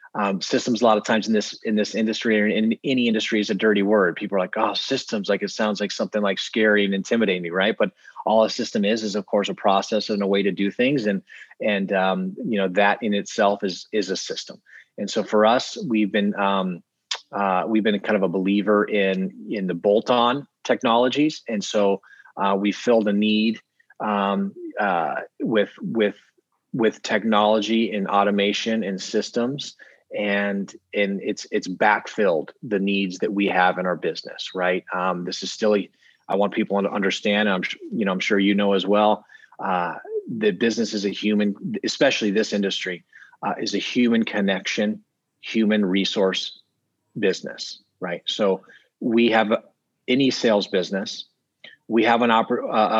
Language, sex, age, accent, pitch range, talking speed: English, male, 30-49, American, 100-115 Hz, 180 wpm